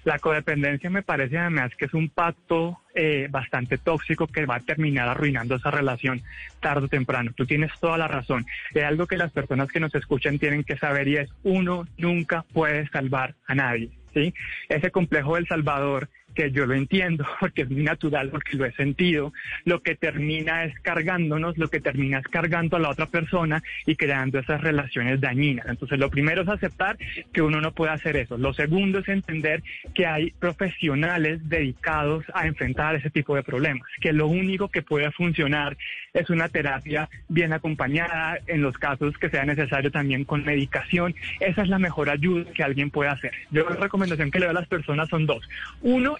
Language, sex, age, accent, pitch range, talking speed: Spanish, male, 20-39, Colombian, 145-170 Hz, 190 wpm